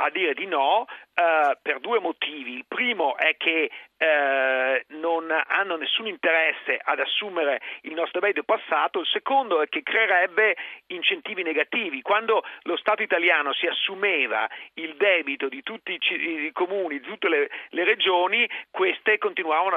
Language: Italian